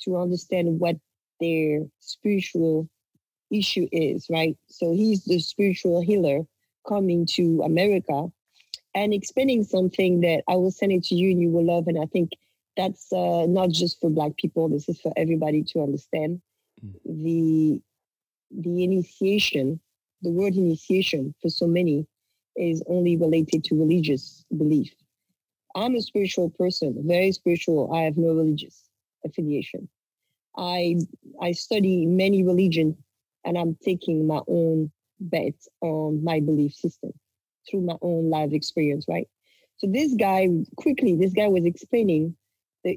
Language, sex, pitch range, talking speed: English, female, 160-190 Hz, 140 wpm